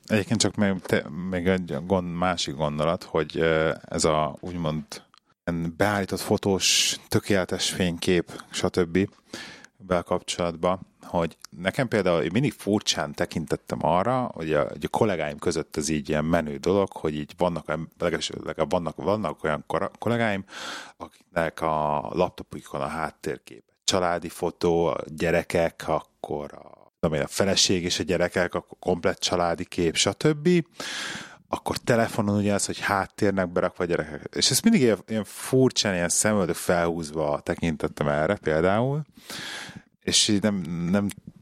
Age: 30-49